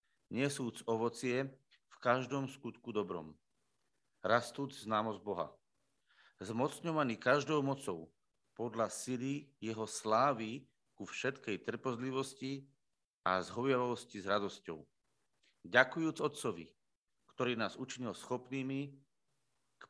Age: 40-59